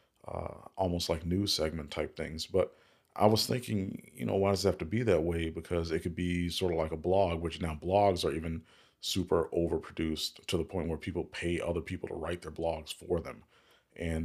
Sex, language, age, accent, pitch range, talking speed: male, English, 40-59, American, 85-95 Hz, 220 wpm